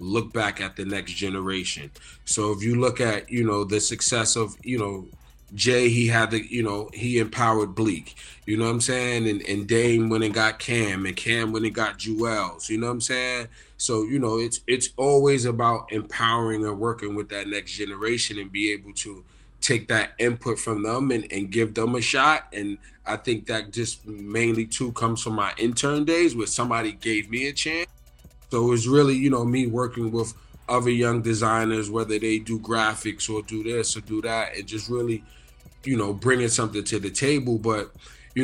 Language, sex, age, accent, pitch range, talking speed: English, male, 20-39, American, 105-120 Hz, 205 wpm